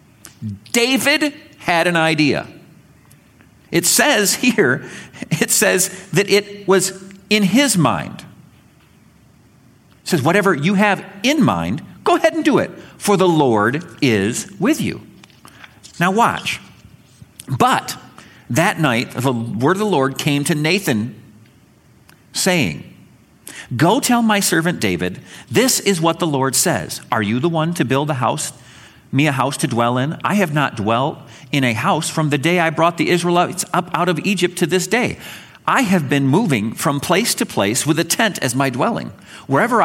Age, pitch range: 50-69, 135-195 Hz